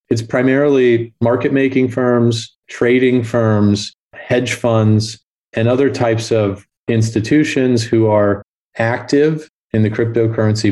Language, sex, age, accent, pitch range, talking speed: English, male, 30-49, American, 105-130 Hz, 110 wpm